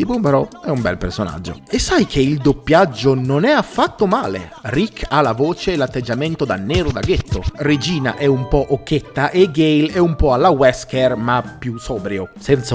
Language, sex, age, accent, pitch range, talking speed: Italian, male, 30-49, native, 125-180 Hz, 185 wpm